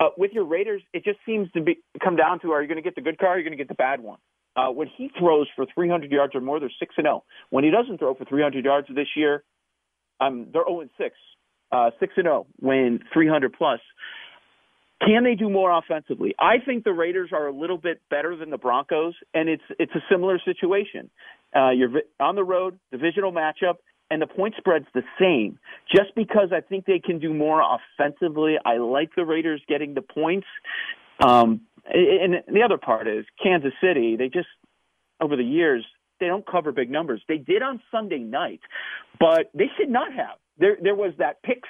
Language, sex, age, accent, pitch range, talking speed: English, male, 40-59, American, 150-205 Hz, 205 wpm